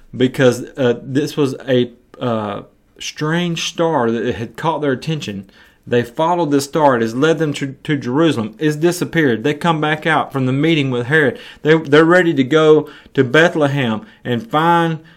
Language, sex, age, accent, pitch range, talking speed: English, male, 30-49, American, 120-155 Hz, 175 wpm